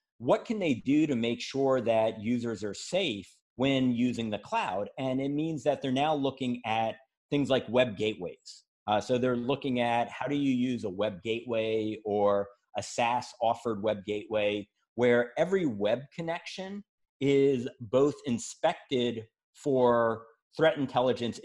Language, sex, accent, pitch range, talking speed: English, male, American, 110-140 Hz, 155 wpm